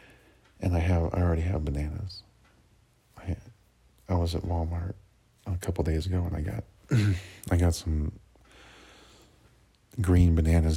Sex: male